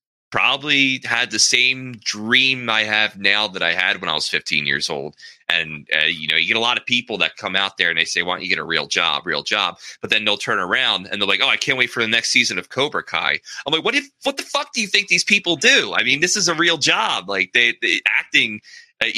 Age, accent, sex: 20-39, American, male